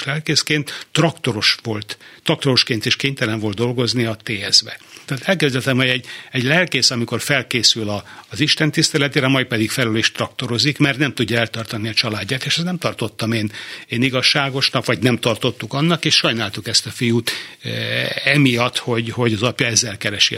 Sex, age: male, 60-79